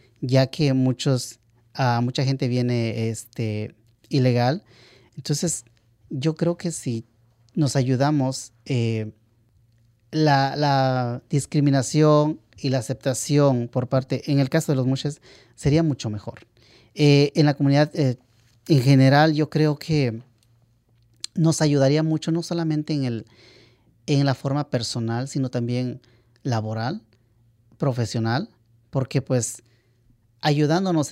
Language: Spanish